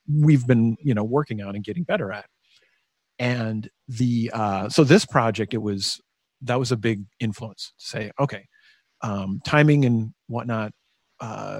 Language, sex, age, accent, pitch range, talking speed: English, male, 40-59, American, 110-140 Hz, 160 wpm